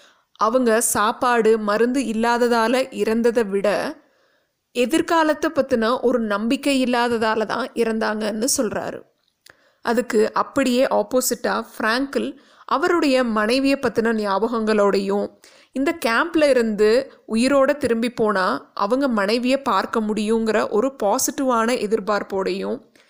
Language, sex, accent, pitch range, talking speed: Tamil, female, native, 215-270 Hz, 90 wpm